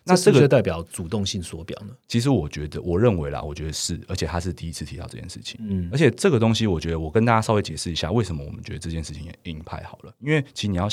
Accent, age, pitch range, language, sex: native, 30-49, 85-115 Hz, Chinese, male